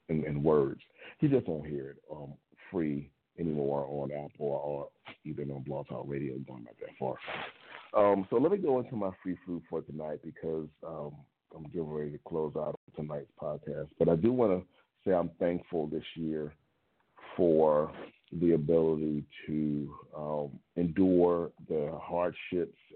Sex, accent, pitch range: male, American, 70-85 Hz